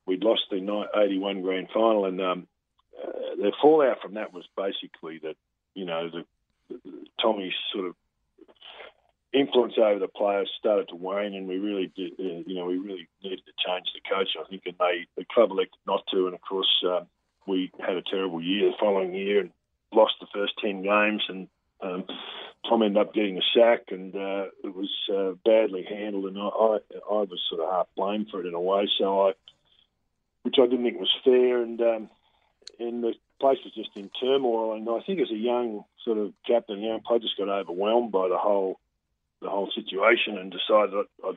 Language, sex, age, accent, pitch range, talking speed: English, male, 40-59, Australian, 95-115 Hz, 200 wpm